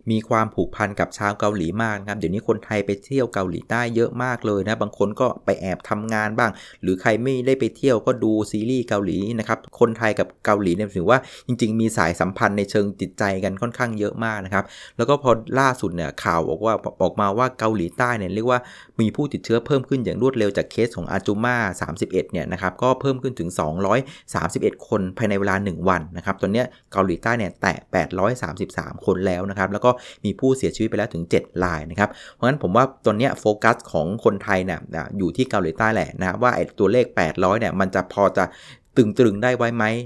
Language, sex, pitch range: Thai, male, 95-115 Hz